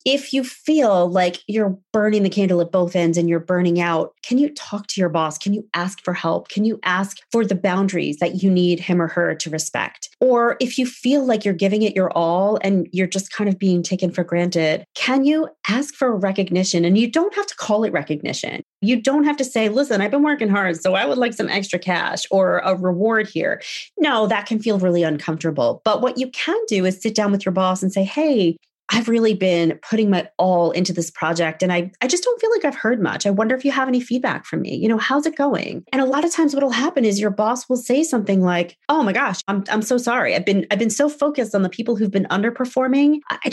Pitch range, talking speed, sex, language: 185-260 Hz, 250 wpm, female, English